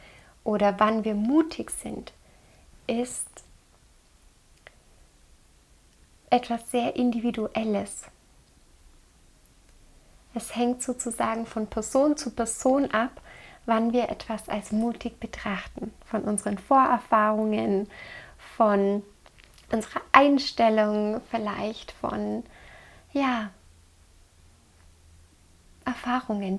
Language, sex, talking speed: German, female, 70 wpm